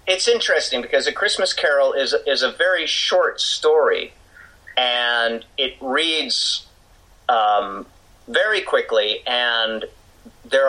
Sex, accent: male, American